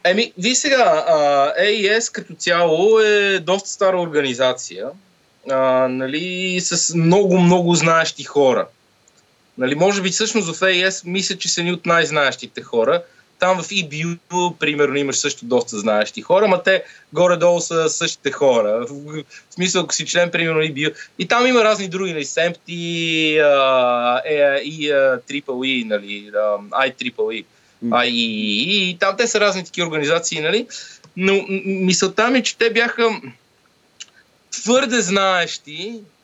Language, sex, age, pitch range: Bulgarian, male, 20-39, 150-200 Hz